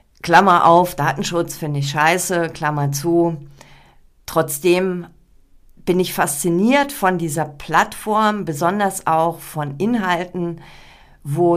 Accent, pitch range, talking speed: German, 150-195 Hz, 105 wpm